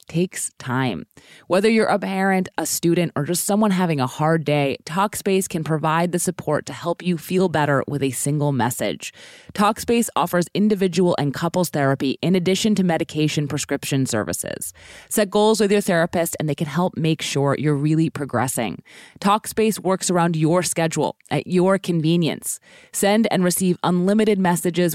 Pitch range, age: 145-185 Hz, 20-39